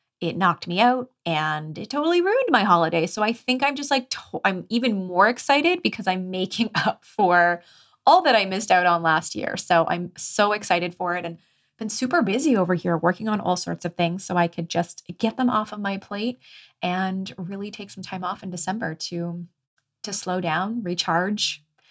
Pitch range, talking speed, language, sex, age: 170-210 Hz, 205 wpm, English, female, 20-39